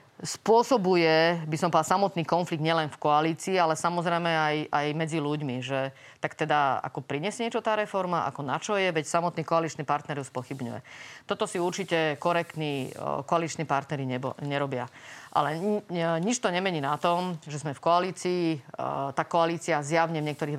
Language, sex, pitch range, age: Slovak, female, 145-175 Hz, 30-49